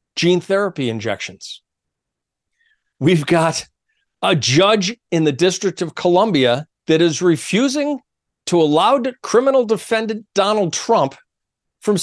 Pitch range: 125-205 Hz